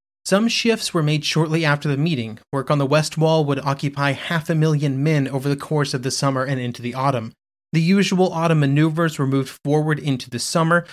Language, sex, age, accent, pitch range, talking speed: English, male, 30-49, American, 130-170 Hz, 215 wpm